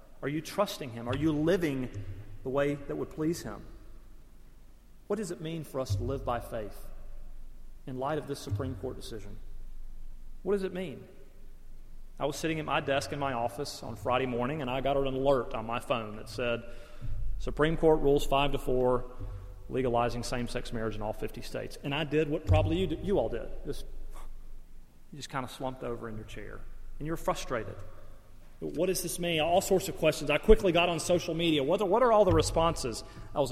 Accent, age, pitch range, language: American, 40-59, 115-165 Hz, English